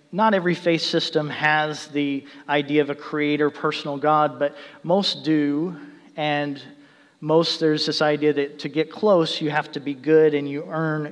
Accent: American